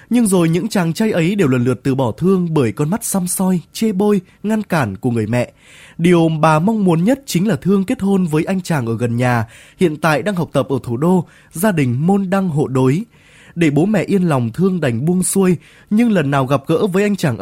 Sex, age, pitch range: male, 20-39, 135-195 Hz